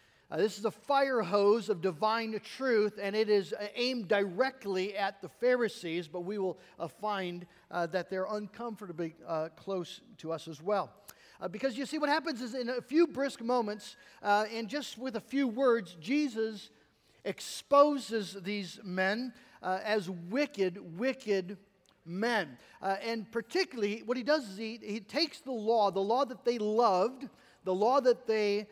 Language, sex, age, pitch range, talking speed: English, male, 50-69, 175-230 Hz, 170 wpm